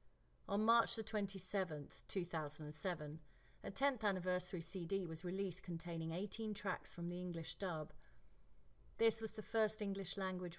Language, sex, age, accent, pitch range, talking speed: English, female, 30-49, British, 160-200 Hz, 130 wpm